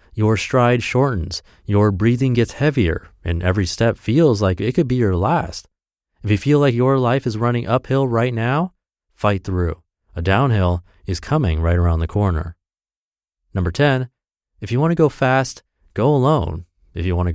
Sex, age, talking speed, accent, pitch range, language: male, 30-49, 175 wpm, American, 90-120 Hz, English